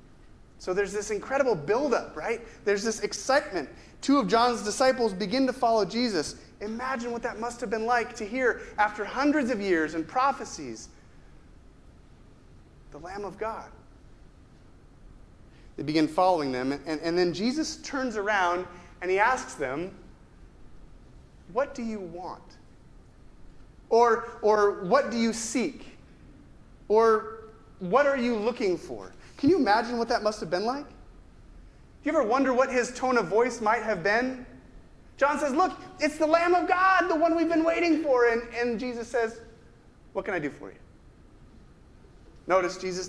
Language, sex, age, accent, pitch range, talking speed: English, male, 30-49, American, 180-250 Hz, 160 wpm